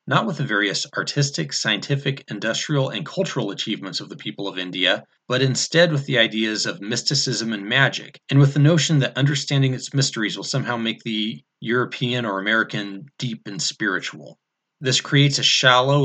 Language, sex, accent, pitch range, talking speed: English, male, American, 110-145 Hz, 170 wpm